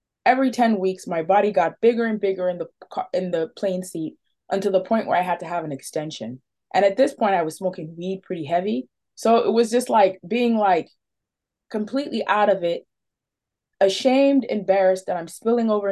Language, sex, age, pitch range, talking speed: English, female, 20-39, 180-240 Hz, 200 wpm